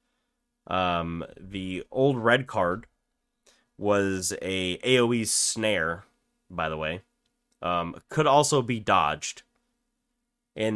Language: English